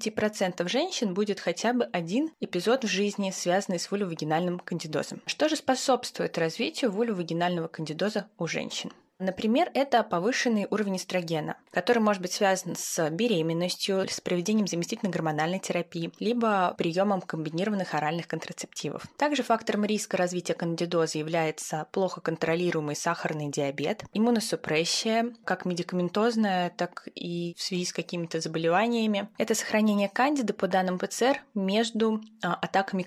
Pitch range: 175-220 Hz